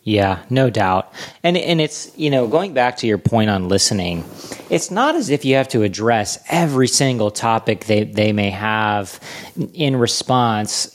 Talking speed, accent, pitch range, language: 175 wpm, American, 105-135 Hz, English